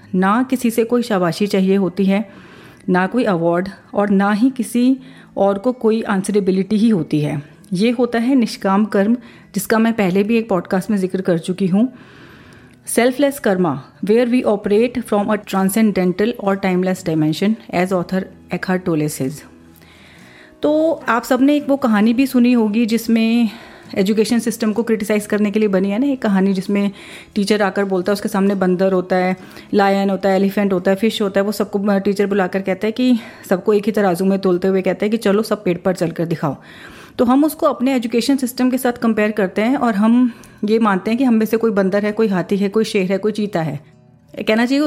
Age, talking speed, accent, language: 30-49, 200 wpm, native, Hindi